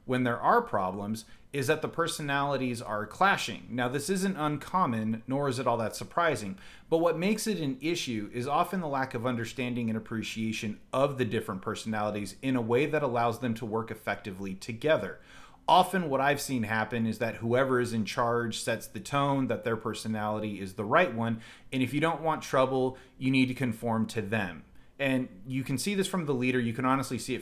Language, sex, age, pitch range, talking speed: English, male, 30-49, 110-135 Hz, 205 wpm